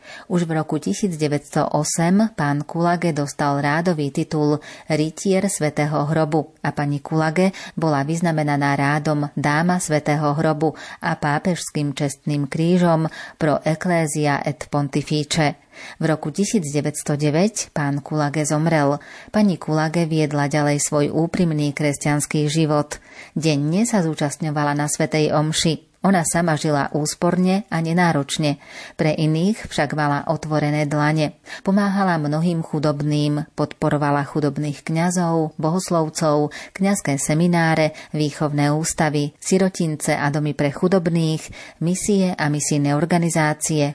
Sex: female